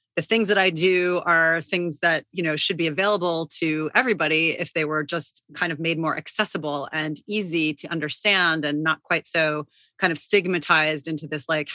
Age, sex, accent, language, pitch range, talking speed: 30-49, female, American, English, 155-175 Hz, 195 wpm